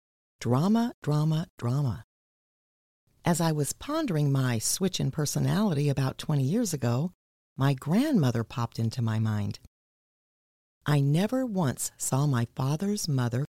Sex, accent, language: female, American, English